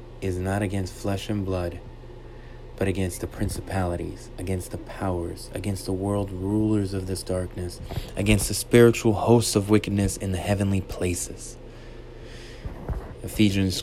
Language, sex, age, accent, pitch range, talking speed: English, male, 20-39, American, 95-115 Hz, 135 wpm